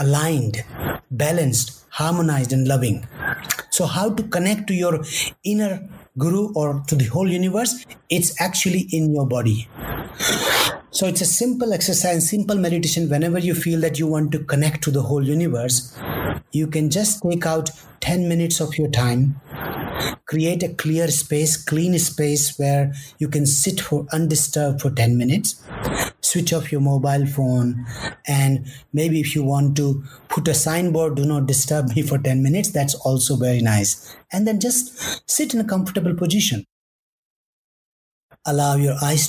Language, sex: English, male